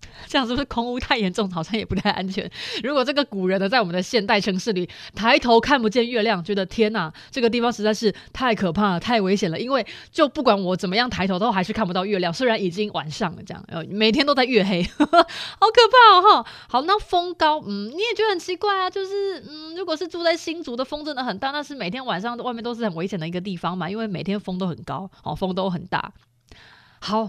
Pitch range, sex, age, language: 190-255 Hz, female, 20-39, Chinese